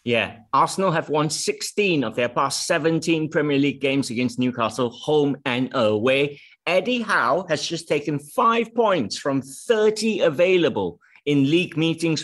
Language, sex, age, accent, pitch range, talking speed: English, male, 30-49, British, 135-200 Hz, 145 wpm